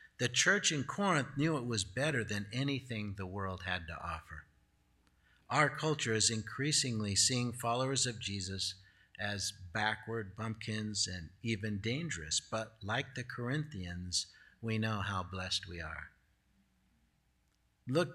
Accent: American